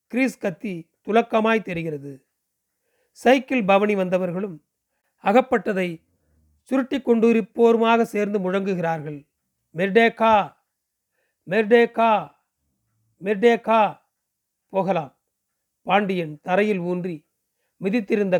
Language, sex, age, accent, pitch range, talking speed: Tamil, male, 40-59, native, 170-220 Hz, 55 wpm